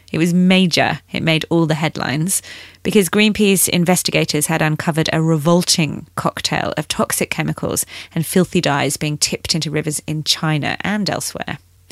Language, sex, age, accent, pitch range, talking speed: English, female, 30-49, British, 145-195 Hz, 150 wpm